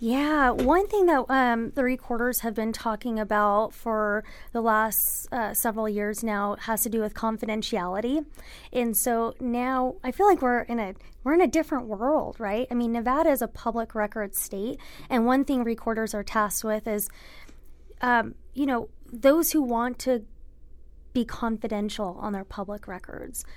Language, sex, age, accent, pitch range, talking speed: English, female, 20-39, American, 215-250 Hz, 170 wpm